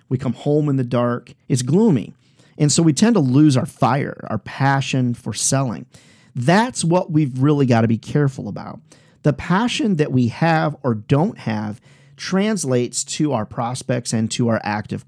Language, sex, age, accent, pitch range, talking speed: English, male, 40-59, American, 125-165 Hz, 180 wpm